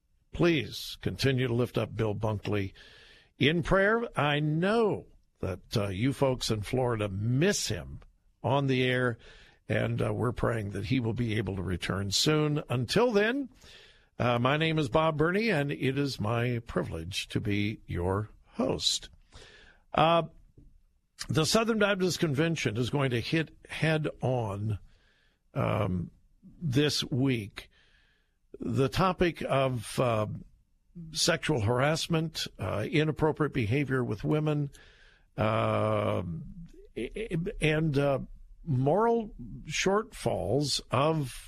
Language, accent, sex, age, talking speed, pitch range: English, American, male, 50-69, 120 wpm, 115-160 Hz